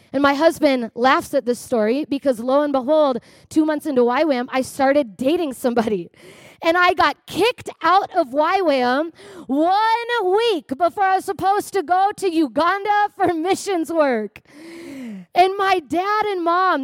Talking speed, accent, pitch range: 155 wpm, American, 270-355 Hz